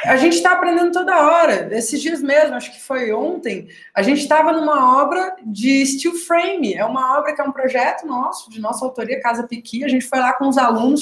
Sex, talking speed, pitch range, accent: female, 225 wpm, 215-295 Hz, Brazilian